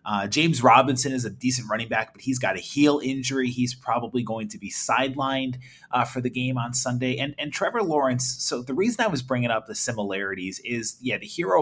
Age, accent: 30-49, American